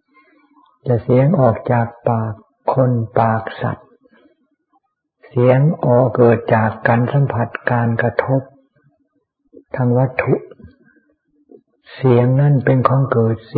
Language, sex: Thai, male